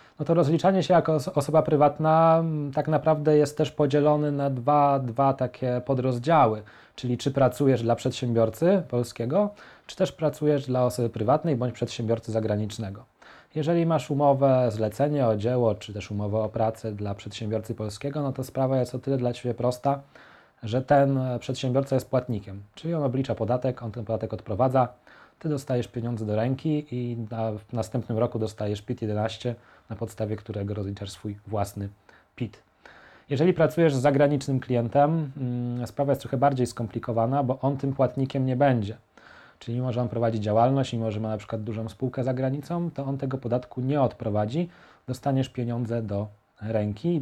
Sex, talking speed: male, 165 wpm